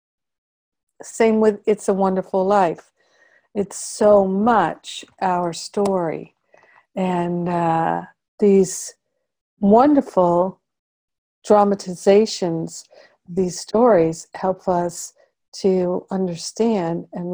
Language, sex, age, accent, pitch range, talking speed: English, female, 50-69, American, 175-205 Hz, 85 wpm